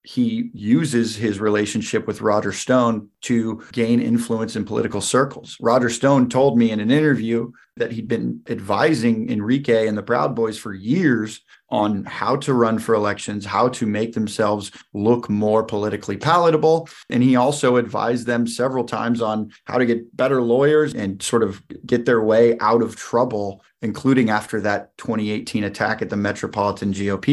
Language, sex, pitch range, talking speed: English, male, 105-125 Hz, 165 wpm